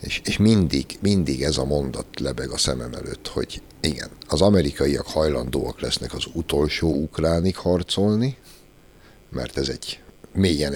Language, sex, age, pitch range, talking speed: Hungarian, male, 60-79, 70-95 Hz, 140 wpm